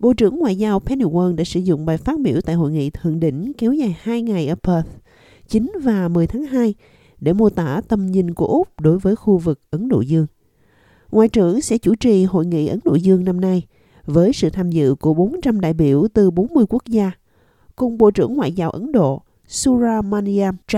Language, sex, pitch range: Vietnamese, female, 165-215 Hz